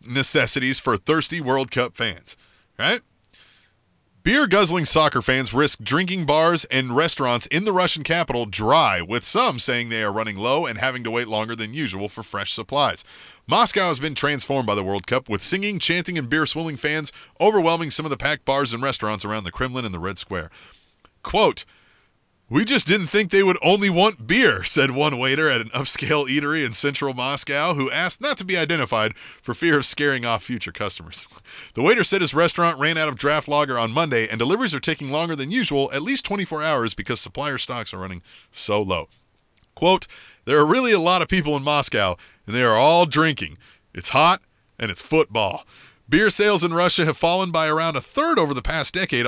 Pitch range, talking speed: 120-170 Hz, 200 wpm